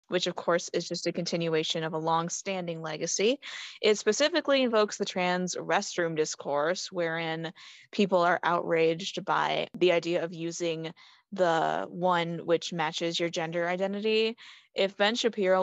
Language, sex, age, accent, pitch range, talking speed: English, female, 20-39, American, 170-195 Hz, 140 wpm